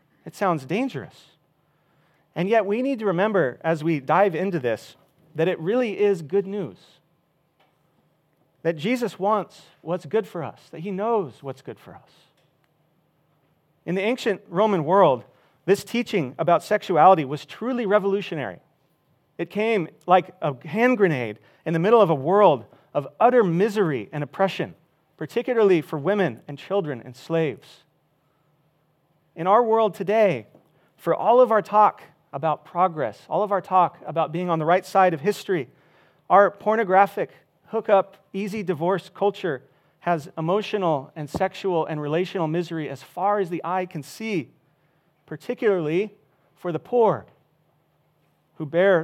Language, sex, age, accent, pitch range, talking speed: English, male, 40-59, American, 155-195 Hz, 145 wpm